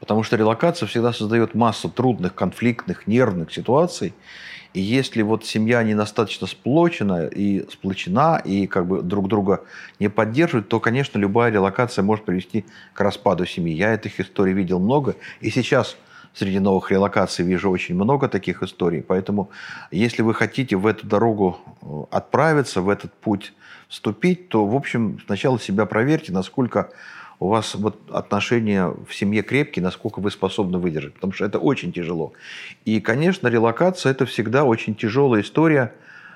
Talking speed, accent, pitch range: 145 wpm, native, 100-120 Hz